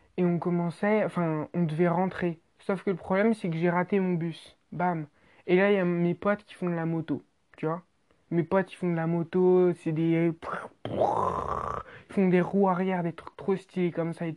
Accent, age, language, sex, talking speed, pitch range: French, 20-39, French, male, 220 wpm, 165-195 Hz